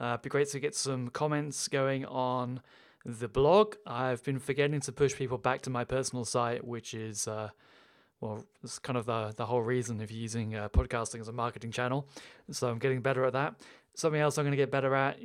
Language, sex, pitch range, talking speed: English, male, 120-135 Hz, 215 wpm